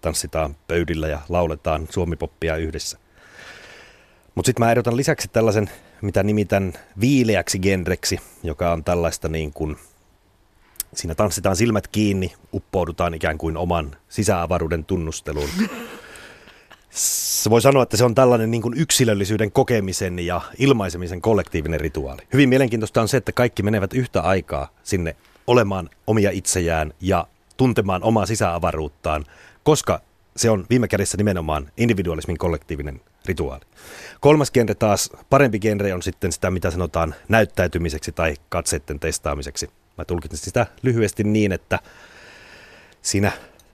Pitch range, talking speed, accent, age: 85-110 Hz, 125 wpm, native, 30-49